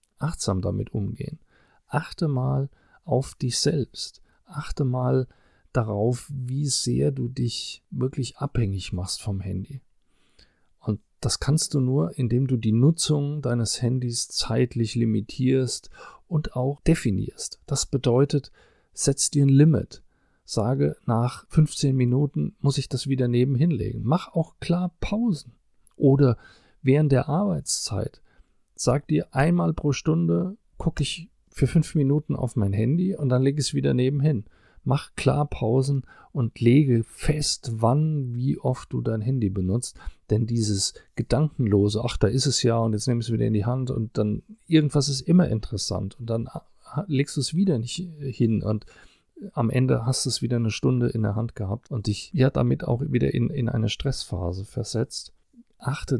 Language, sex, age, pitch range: German, male, 40-59, 115-145 Hz